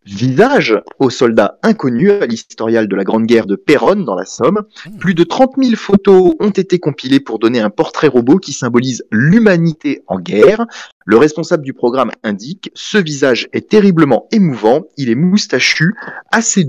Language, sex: French, male